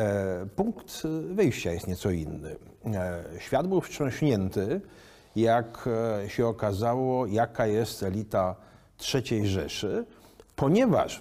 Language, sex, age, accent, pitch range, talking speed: Polish, male, 50-69, native, 100-145 Hz, 90 wpm